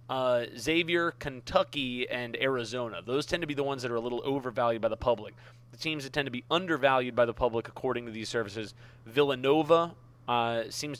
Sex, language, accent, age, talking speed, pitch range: male, English, American, 30-49, 195 wpm, 120-145 Hz